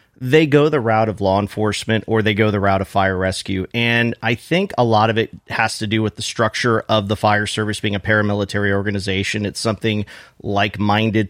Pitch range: 105-120 Hz